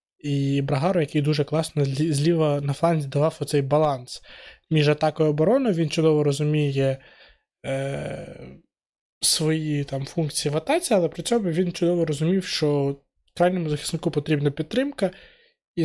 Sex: male